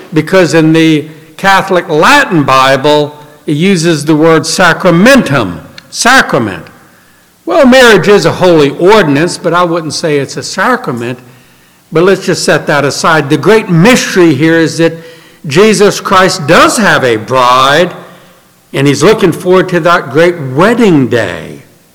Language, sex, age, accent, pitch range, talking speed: English, male, 60-79, American, 150-205 Hz, 140 wpm